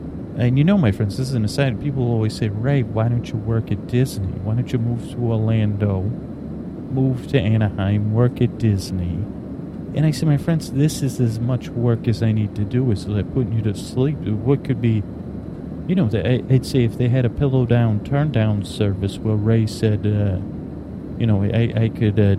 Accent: American